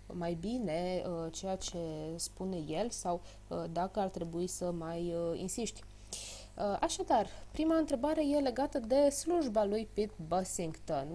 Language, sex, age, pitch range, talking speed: Romanian, female, 20-39, 180-250 Hz, 145 wpm